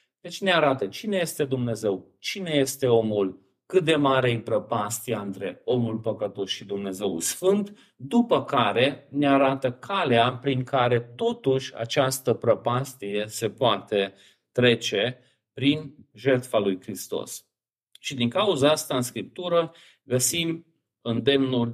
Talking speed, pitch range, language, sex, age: 125 wpm, 115-145 Hz, Romanian, male, 40-59